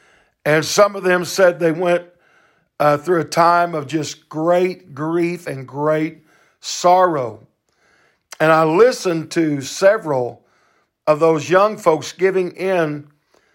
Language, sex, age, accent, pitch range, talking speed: English, male, 50-69, American, 155-190 Hz, 130 wpm